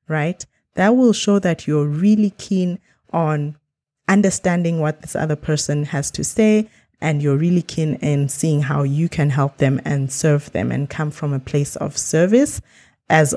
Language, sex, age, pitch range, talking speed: English, female, 20-39, 140-170 Hz, 175 wpm